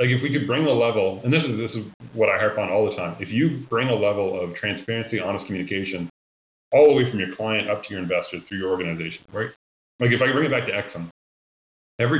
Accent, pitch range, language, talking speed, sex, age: American, 90-115 Hz, English, 250 wpm, male, 30-49